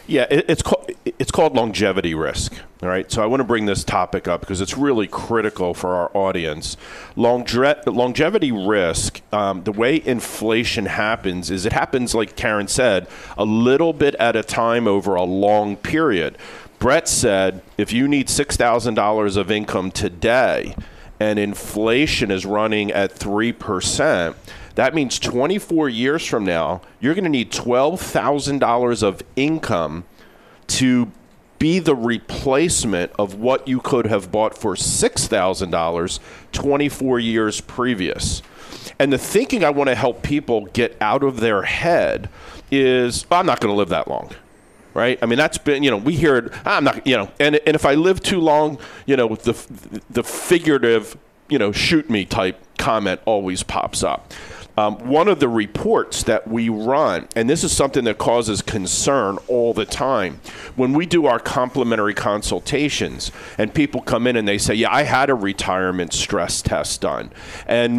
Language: English